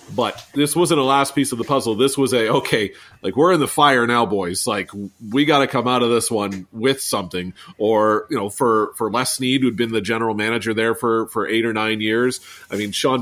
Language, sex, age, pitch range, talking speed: English, male, 40-59, 105-140 Hz, 240 wpm